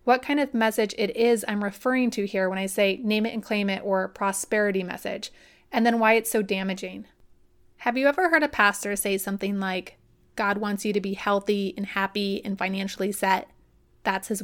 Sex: female